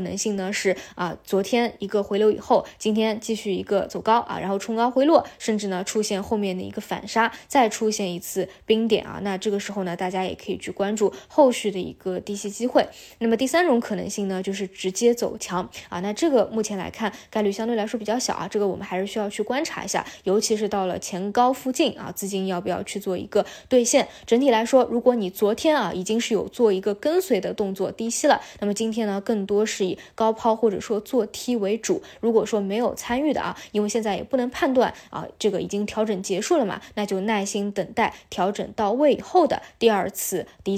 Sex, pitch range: female, 195-235 Hz